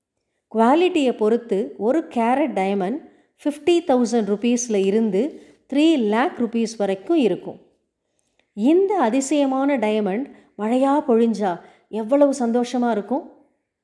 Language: Tamil